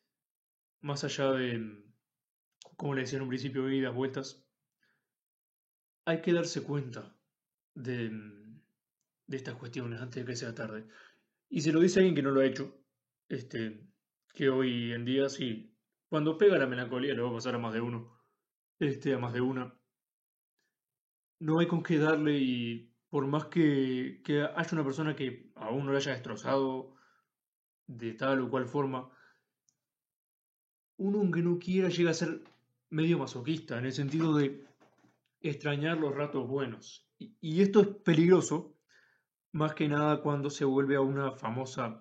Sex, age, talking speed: male, 20-39, 160 wpm